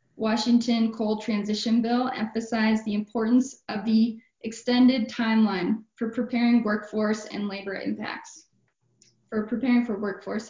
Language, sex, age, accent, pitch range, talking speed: English, female, 10-29, American, 210-245 Hz, 120 wpm